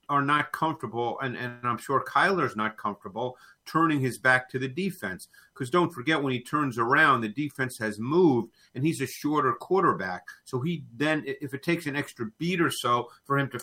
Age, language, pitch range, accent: 50-69, English, 120-155 Hz, American